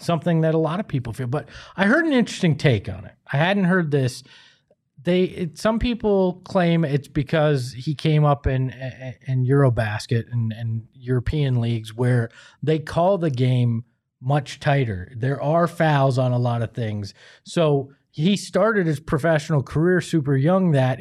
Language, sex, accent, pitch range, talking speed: English, male, American, 130-180 Hz, 170 wpm